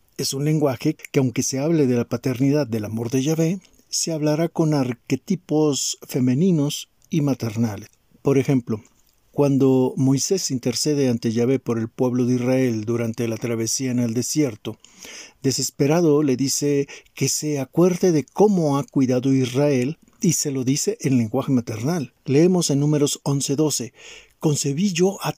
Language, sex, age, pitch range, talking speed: Spanish, male, 50-69, 130-155 Hz, 150 wpm